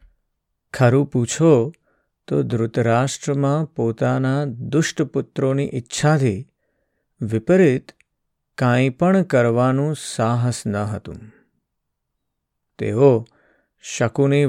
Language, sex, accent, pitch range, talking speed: Gujarati, male, native, 115-140 Hz, 70 wpm